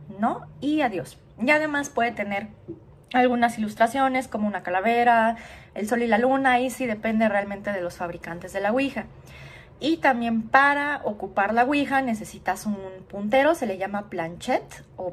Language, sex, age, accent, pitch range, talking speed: Spanish, female, 20-39, Mexican, 185-270 Hz, 165 wpm